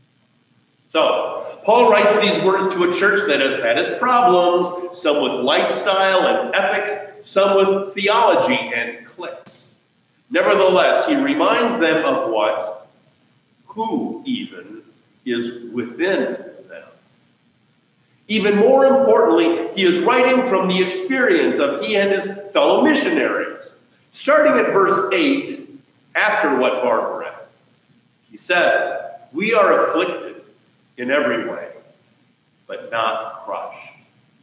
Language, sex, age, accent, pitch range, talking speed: English, male, 50-69, American, 180-285 Hz, 120 wpm